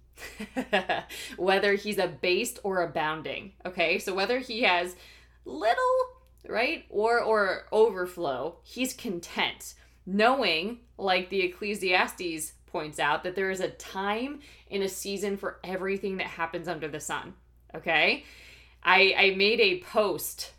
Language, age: English, 20-39